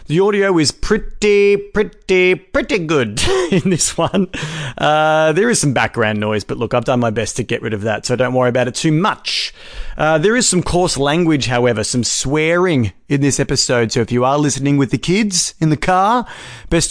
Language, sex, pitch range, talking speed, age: English, male, 125-175 Hz, 205 wpm, 40-59